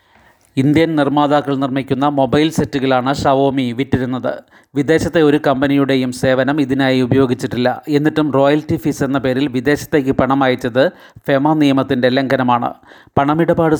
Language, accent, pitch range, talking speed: Malayalam, native, 130-145 Hz, 110 wpm